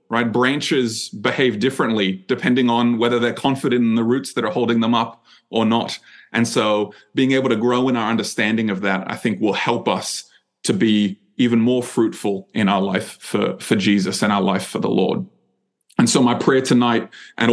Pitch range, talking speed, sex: 110-130 Hz, 200 wpm, male